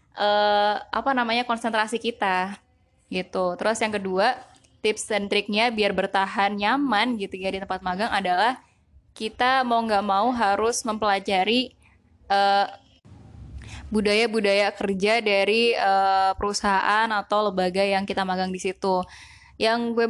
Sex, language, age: female, Indonesian, 10-29